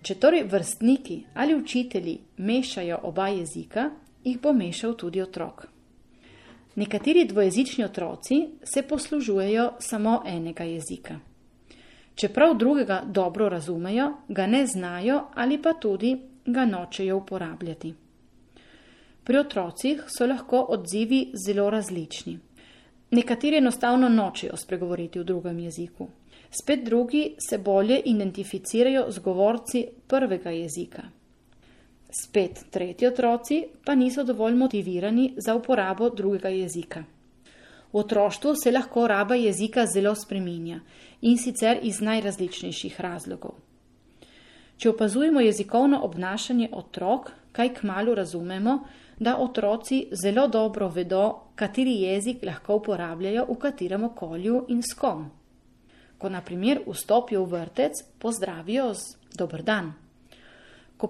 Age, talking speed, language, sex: 30-49, 110 wpm, Italian, female